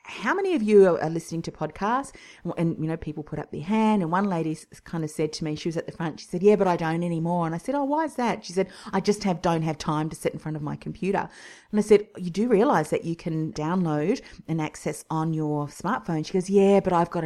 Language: English